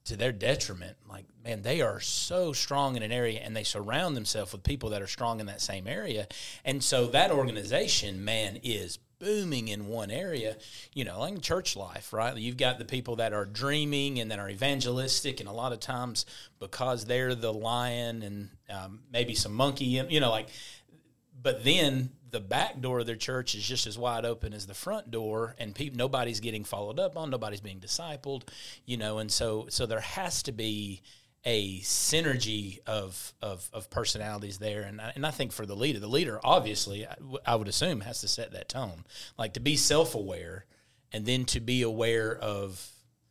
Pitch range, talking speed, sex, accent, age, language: 105-130 Hz, 200 wpm, male, American, 30-49, English